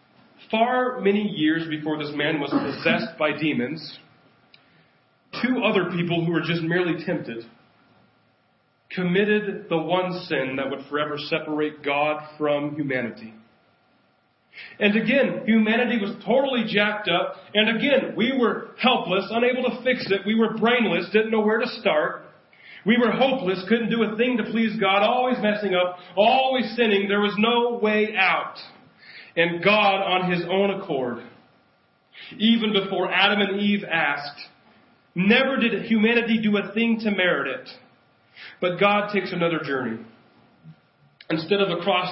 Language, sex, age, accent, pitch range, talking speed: English, male, 40-59, American, 165-220 Hz, 145 wpm